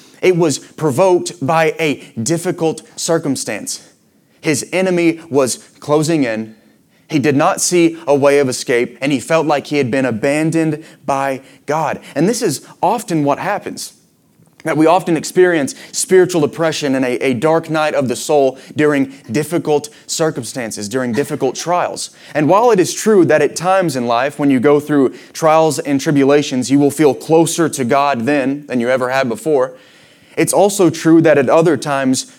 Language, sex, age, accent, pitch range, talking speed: English, male, 30-49, American, 130-165 Hz, 170 wpm